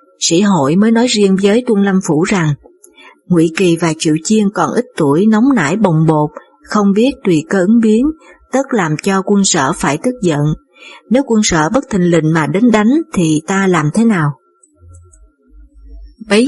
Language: Vietnamese